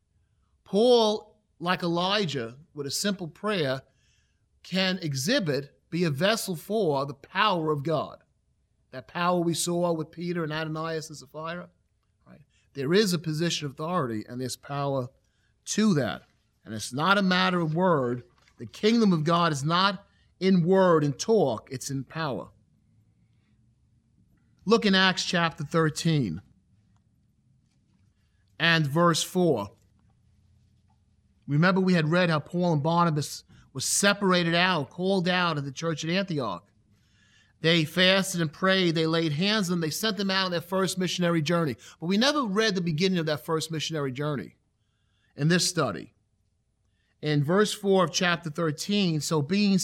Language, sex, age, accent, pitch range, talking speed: English, male, 40-59, American, 130-185 Hz, 150 wpm